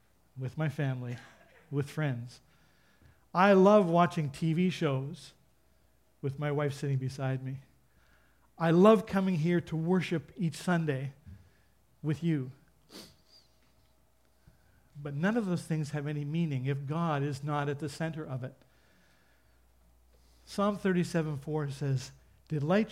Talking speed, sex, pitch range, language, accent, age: 125 wpm, male, 130-160 Hz, English, American, 50-69